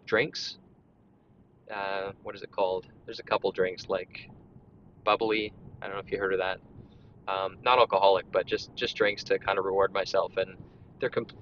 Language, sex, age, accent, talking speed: English, male, 20-39, American, 185 wpm